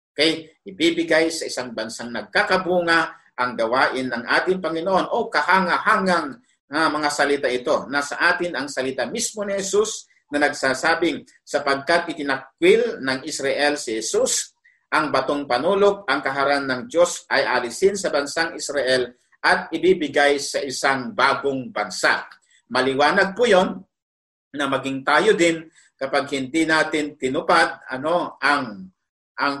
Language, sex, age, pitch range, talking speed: Filipino, male, 50-69, 135-180 Hz, 130 wpm